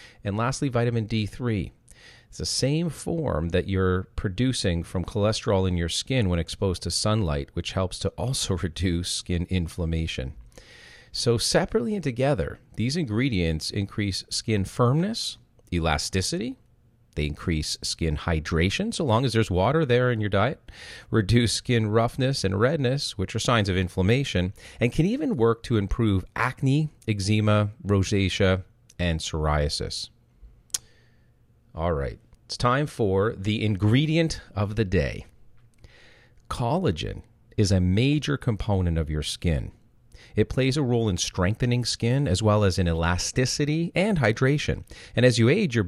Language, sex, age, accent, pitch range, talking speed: English, male, 40-59, American, 90-125 Hz, 140 wpm